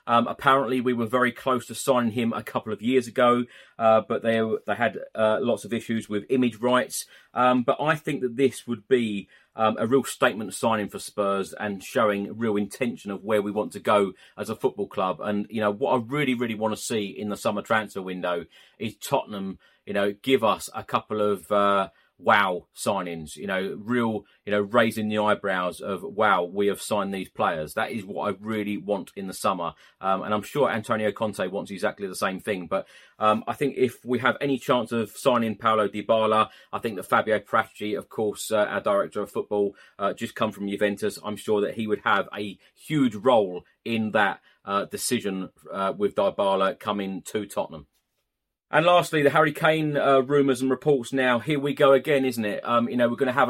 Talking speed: 210 wpm